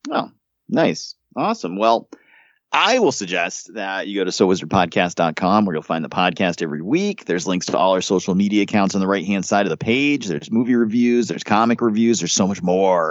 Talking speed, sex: 205 wpm, male